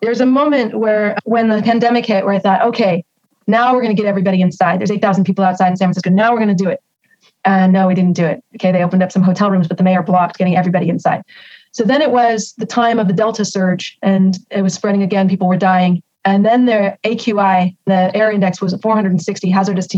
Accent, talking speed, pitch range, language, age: American, 245 wpm, 190-230 Hz, English, 30-49